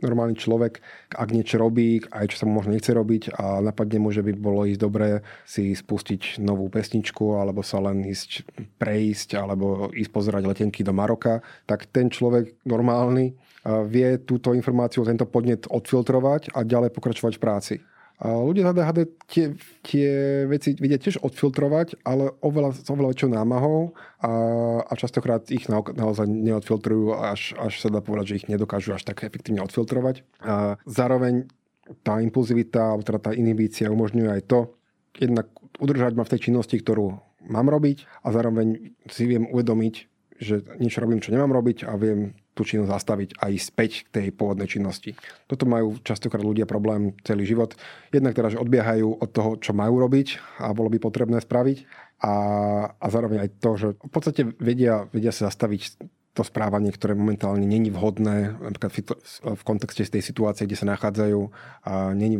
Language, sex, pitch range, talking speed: Slovak, male, 105-120 Hz, 170 wpm